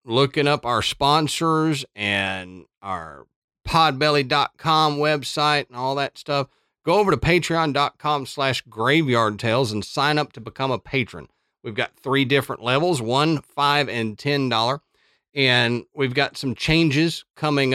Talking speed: 140 wpm